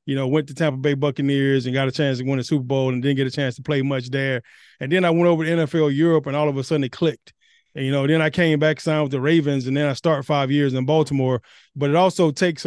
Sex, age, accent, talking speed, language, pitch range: male, 20-39, American, 300 wpm, English, 130-150 Hz